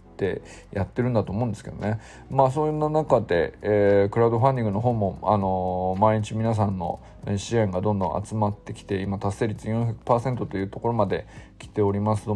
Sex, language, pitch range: male, Japanese, 100-135 Hz